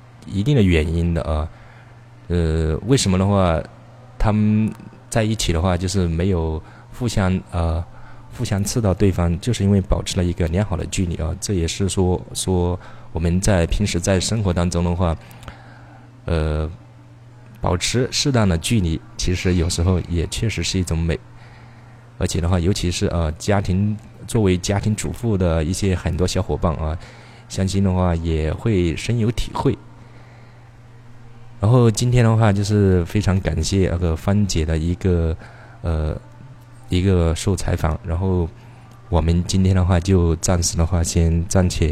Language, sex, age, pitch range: Chinese, male, 20-39, 85-115 Hz